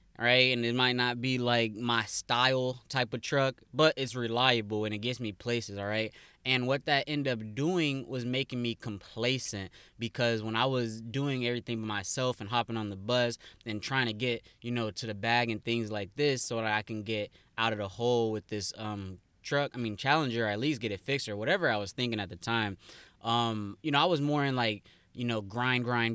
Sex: male